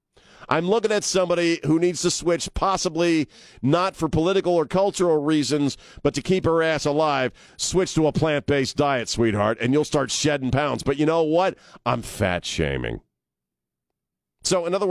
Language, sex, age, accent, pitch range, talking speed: English, male, 50-69, American, 100-150 Hz, 165 wpm